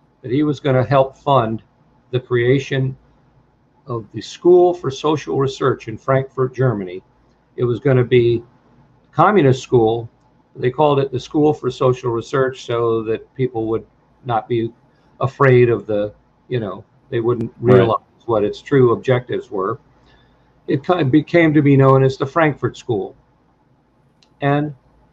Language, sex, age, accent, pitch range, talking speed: English, male, 50-69, American, 120-140 Hz, 150 wpm